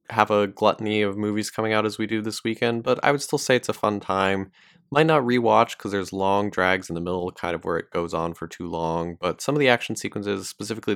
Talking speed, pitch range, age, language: 255 wpm, 90-115 Hz, 20-39, English